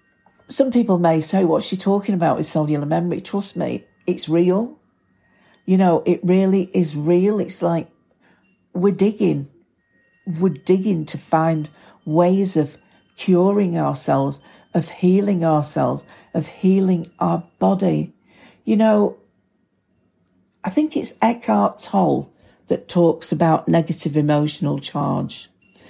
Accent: British